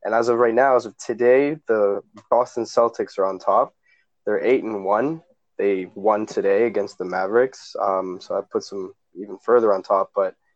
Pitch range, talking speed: 105-140 Hz, 180 wpm